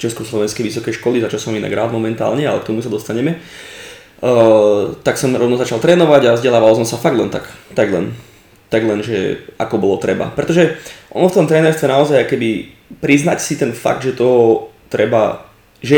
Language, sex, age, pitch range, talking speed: Slovak, male, 20-39, 110-135 Hz, 185 wpm